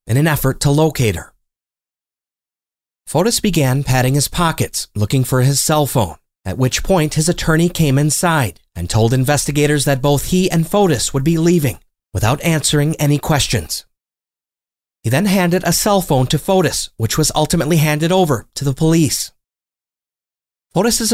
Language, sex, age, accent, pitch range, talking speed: English, male, 30-49, American, 125-170 Hz, 155 wpm